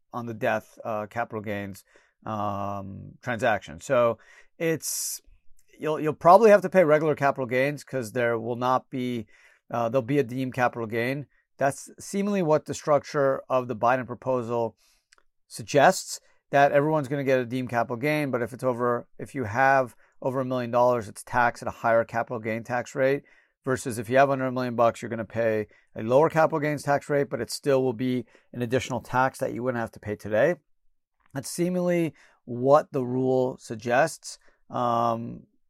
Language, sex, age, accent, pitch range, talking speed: English, male, 40-59, American, 115-140 Hz, 185 wpm